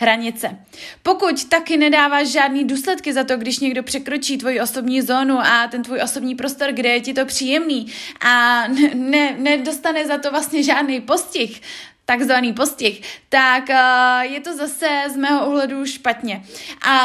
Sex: female